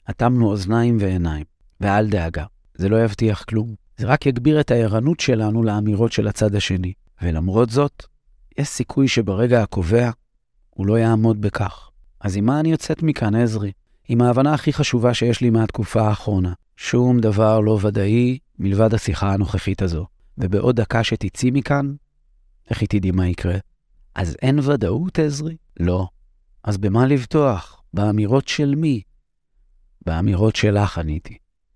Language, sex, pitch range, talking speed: Hebrew, male, 95-120 Hz, 140 wpm